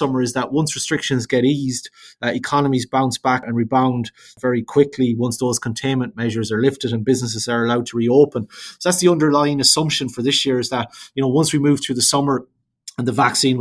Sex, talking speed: male, 210 wpm